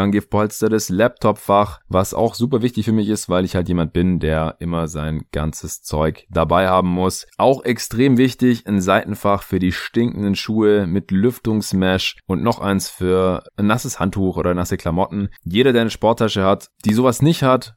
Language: German